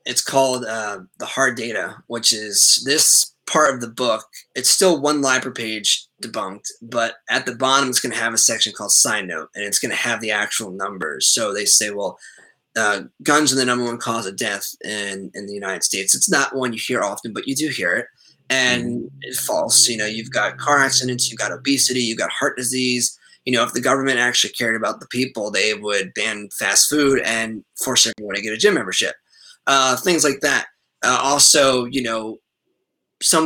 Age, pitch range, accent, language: 20-39, 110-135 Hz, American, English